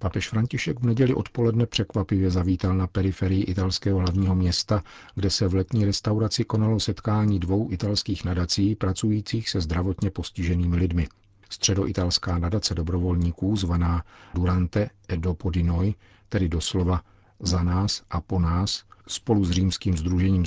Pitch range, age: 90-105 Hz, 50-69